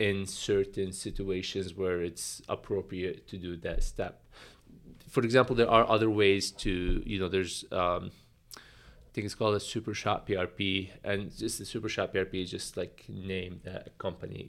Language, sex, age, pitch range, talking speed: English, male, 20-39, 95-105 Hz, 175 wpm